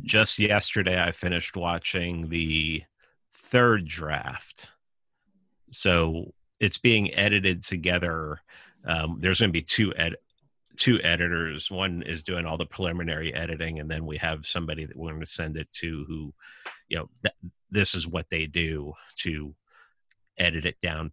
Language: English